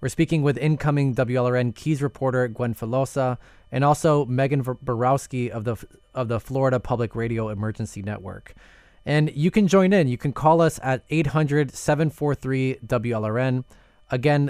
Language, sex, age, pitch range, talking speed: English, male, 20-39, 115-150 Hz, 140 wpm